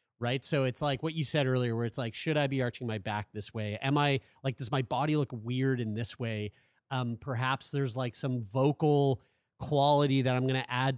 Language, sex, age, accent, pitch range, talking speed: English, male, 30-49, American, 125-150 Hz, 230 wpm